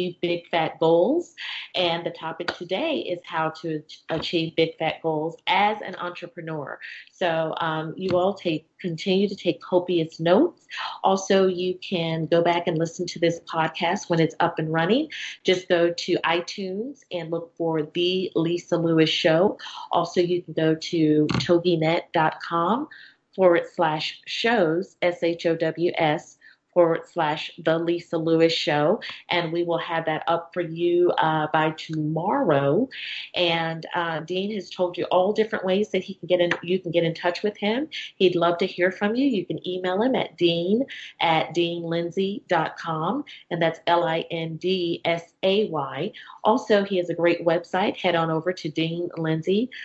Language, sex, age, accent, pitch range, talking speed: English, female, 30-49, American, 165-185 Hz, 155 wpm